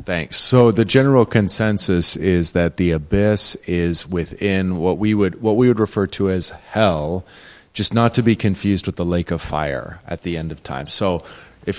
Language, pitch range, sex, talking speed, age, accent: English, 85-100 Hz, male, 195 wpm, 30-49, American